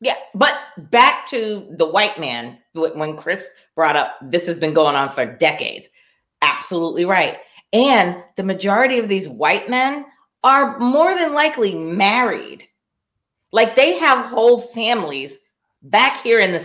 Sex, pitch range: female, 160-245 Hz